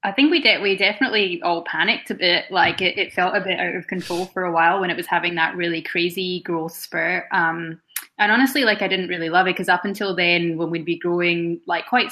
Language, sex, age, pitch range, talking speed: English, female, 10-29, 165-180 Hz, 250 wpm